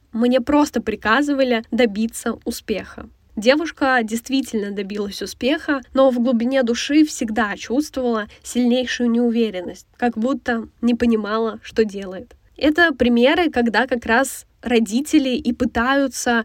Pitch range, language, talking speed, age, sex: 220-255 Hz, Russian, 115 wpm, 10-29, female